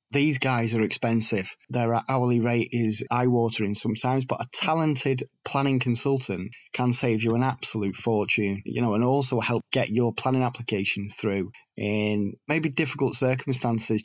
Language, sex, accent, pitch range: English, male, British, 115-130 Hz